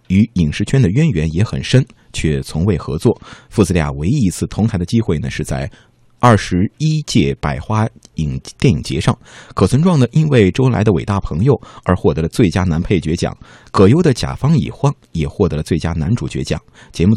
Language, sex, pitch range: Chinese, male, 85-125 Hz